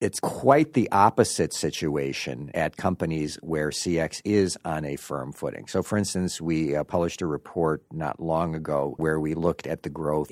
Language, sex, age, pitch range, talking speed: English, male, 50-69, 75-90 Hz, 175 wpm